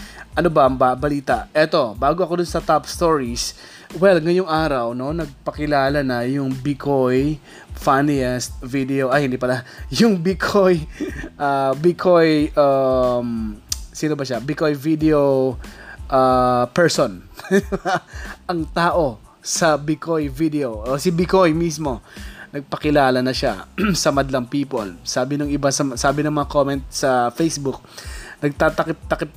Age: 20-39